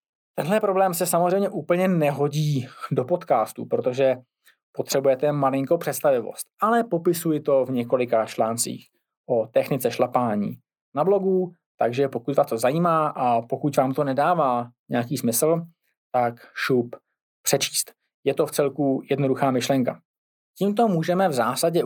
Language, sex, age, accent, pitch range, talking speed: Czech, male, 20-39, native, 125-165 Hz, 130 wpm